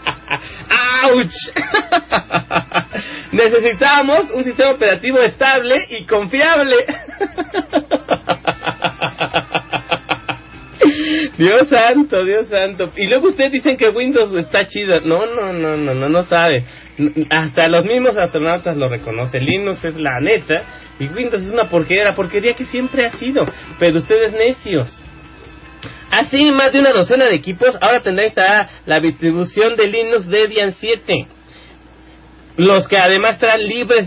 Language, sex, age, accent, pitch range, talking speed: English, male, 30-49, Mexican, 170-245 Hz, 130 wpm